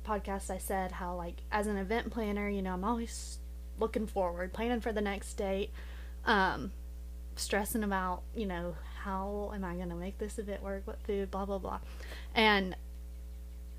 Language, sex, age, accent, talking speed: English, female, 20-39, American, 175 wpm